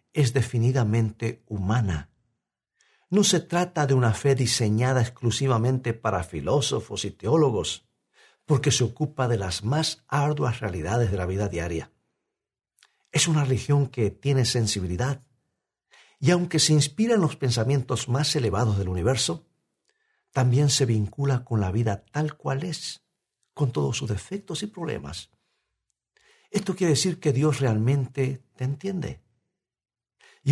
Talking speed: 135 wpm